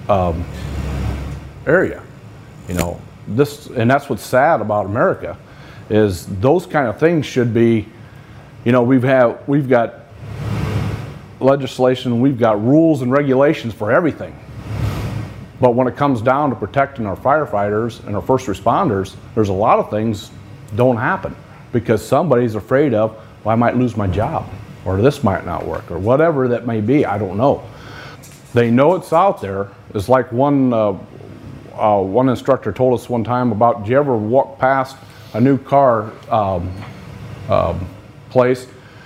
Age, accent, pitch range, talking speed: 40-59, American, 105-135 Hz, 160 wpm